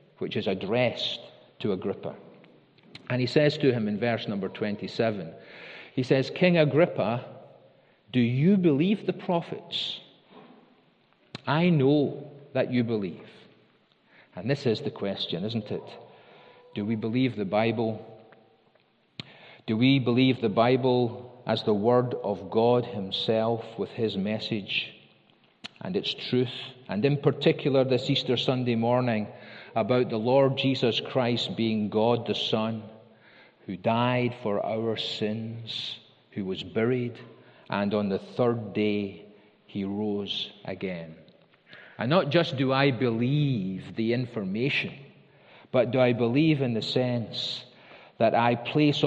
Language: English